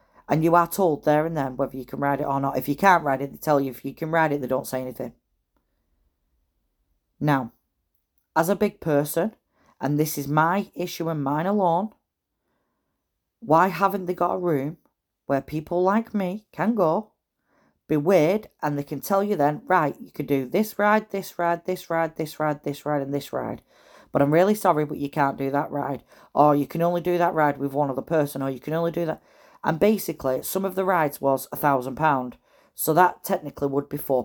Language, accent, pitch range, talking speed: English, British, 140-175 Hz, 215 wpm